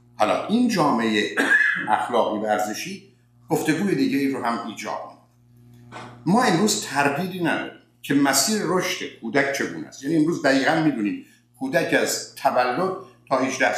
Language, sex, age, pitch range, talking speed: Persian, male, 60-79, 120-165 Hz, 130 wpm